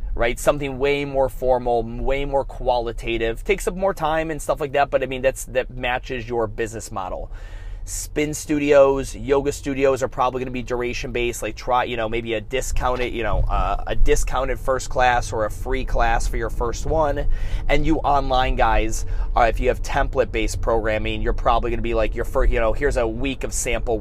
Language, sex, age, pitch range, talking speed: English, male, 20-39, 110-145 Hz, 205 wpm